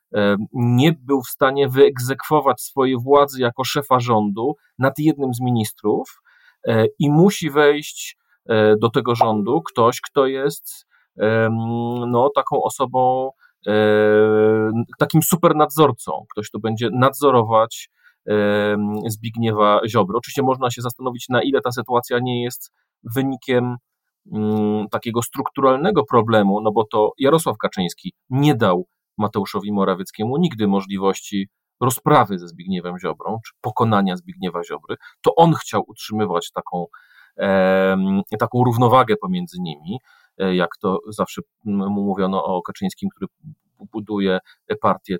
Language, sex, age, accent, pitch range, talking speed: Polish, male, 40-59, native, 105-135 Hz, 115 wpm